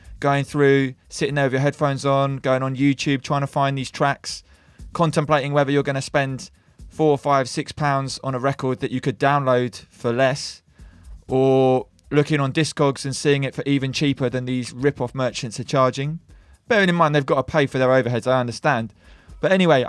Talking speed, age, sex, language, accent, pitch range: 200 wpm, 20-39, male, English, British, 120-150 Hz